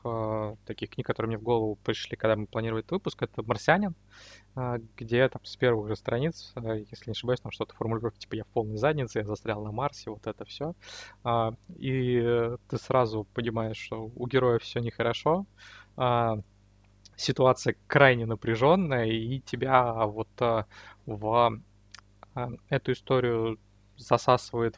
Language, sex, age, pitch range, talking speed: Russian, male, 20-39, 110-130 Hz, 140 wpm